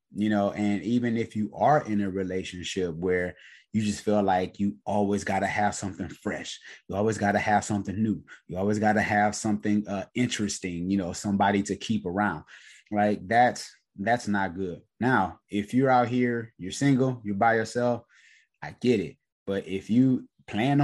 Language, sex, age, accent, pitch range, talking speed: English, male, 20-39, American, 95-120 Hz, 185 wpm